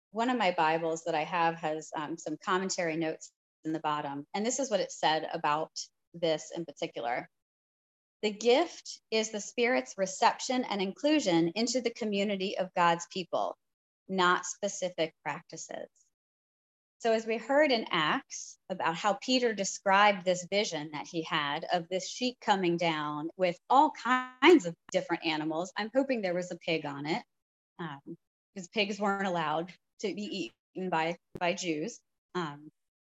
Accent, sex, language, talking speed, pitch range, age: American, female, English, 160 wpm, 165-225 Hz, 30-49